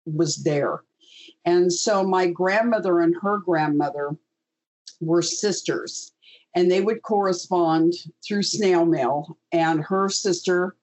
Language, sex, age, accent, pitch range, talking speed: English, female, 50-69, American, 160-185 Hz, 115 wpm